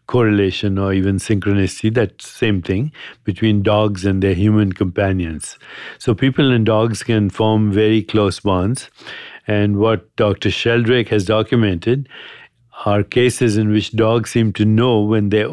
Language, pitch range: English, 100-110 Hz